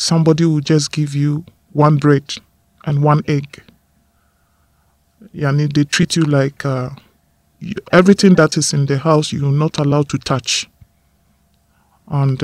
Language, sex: English, male